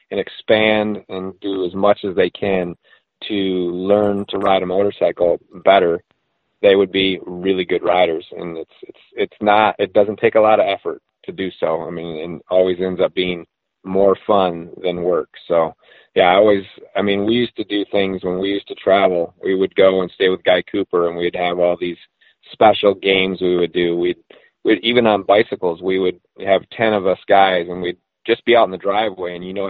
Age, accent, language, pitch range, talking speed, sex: 30-49, American, English, 90-105 Hz, 210 wpm, male